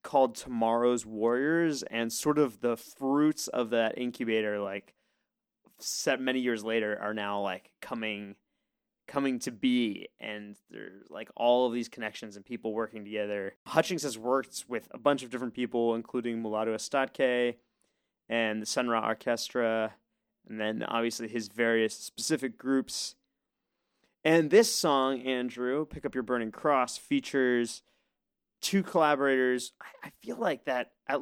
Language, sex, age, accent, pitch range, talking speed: English, male, 20-39, American, 115-145 Hz, 140 wpm